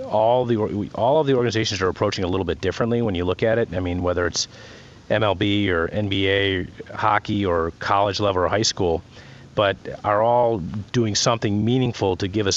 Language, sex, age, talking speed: English, male, 40-59, 190 wpm